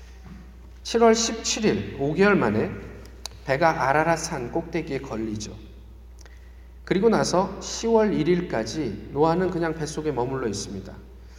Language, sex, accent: Korean, male, native